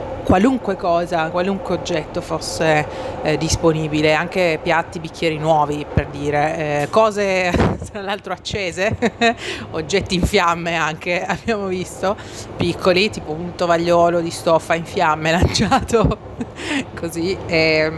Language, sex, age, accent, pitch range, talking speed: Italian, female, 30-49, native, 155-180 Hz, 115 wpm